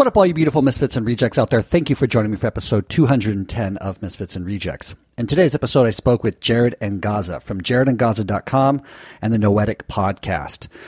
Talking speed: 215 wpm